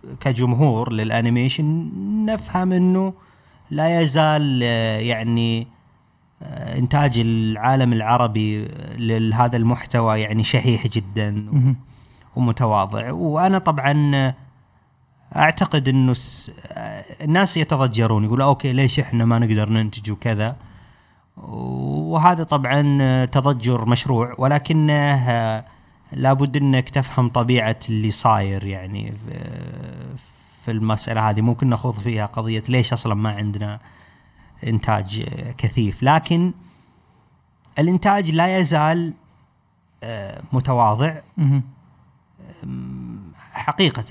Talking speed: 85 wpm